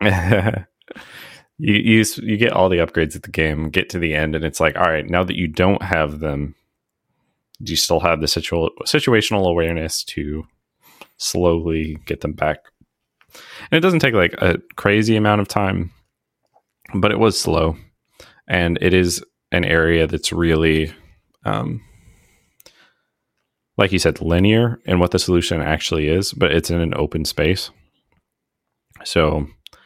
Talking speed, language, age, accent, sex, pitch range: 155 wpm, English, 30-49, American, male, 80-100 Hz